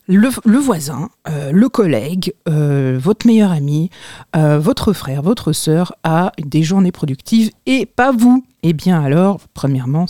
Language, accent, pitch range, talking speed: French, French, 155-205 Hz, 155 wpm